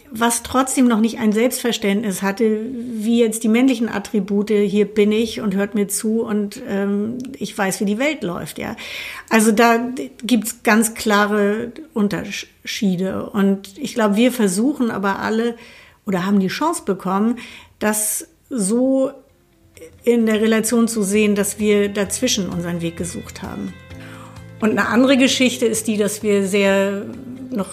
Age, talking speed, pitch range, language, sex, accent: 60-79, 155 wpm, 200-235 Hz, German, female, German